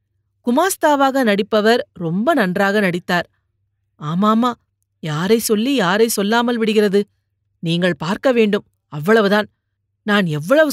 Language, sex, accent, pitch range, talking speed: Tamil, female, native, 170-240 Hz, 95 wpm